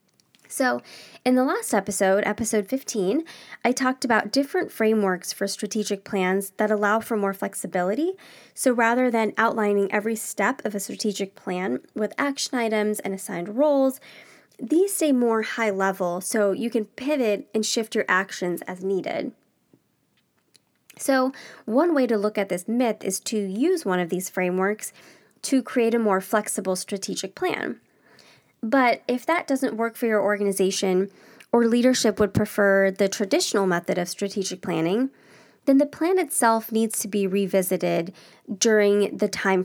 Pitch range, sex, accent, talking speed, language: 195-245 Hz, female, American, 155 wpm, English